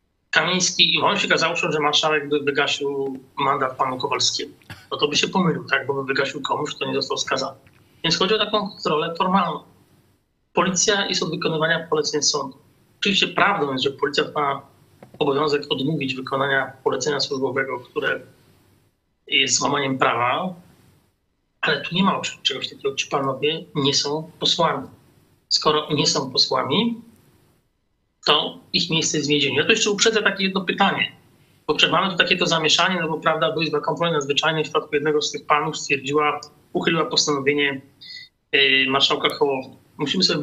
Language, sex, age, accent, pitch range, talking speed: Polish, male, 30-49, native, 140-165 Hz, 155 wpm